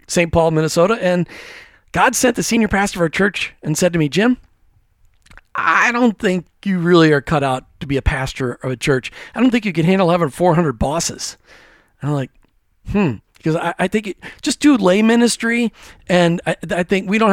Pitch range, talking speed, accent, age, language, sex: 150-200 Hz, 210 wpm, American, 40-59, English, male